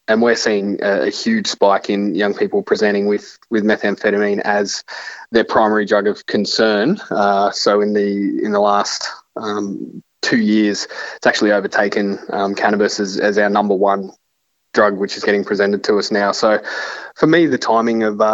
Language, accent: English, Australian